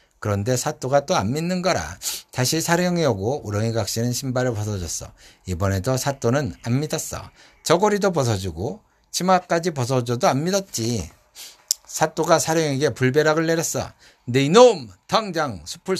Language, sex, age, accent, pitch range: Korean, male, 60-79, native, 115-165 Hz